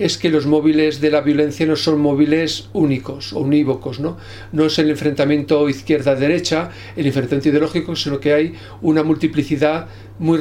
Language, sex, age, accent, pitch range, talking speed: English, male, 50-69, Spanish, 140-165 Hz, 160 wpm